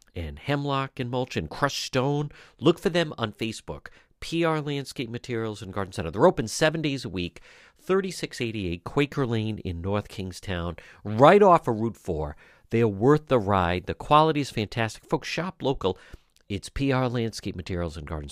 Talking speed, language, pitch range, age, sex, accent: 170 wpm, English, 90-130 Hz, 50-69, male, American